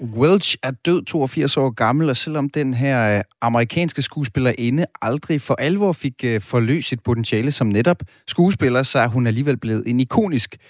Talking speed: 165 wpm